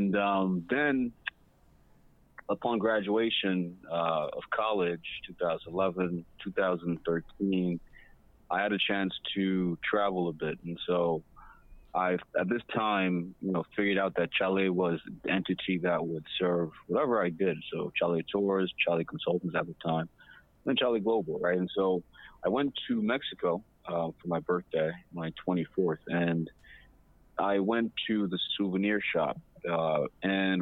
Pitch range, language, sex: 90-100 Hz, English, male